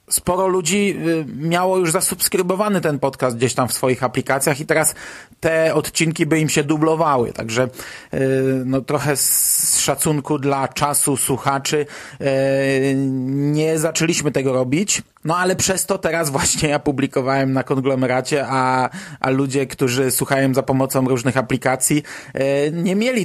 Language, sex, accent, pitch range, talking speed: Polish, male, native, 130-150 Hz, 135 wpm